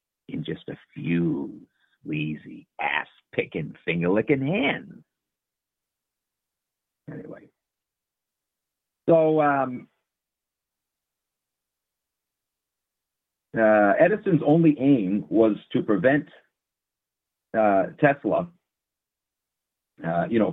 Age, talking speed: 50-69, 65 wpm